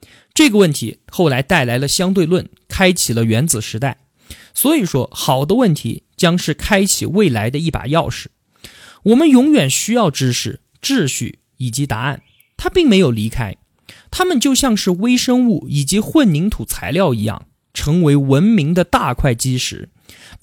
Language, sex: Chinese, male